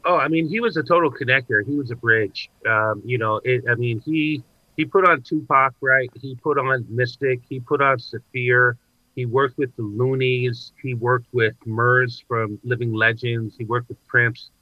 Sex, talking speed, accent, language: male, 195 wpm, American, English